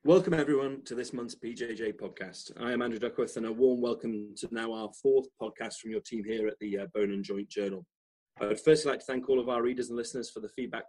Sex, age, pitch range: male, 30-49, 105-165 Hz